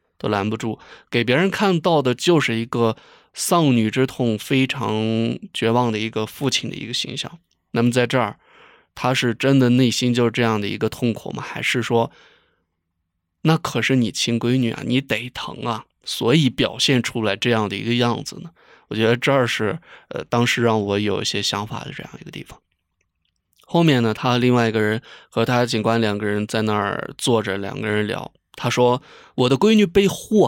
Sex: male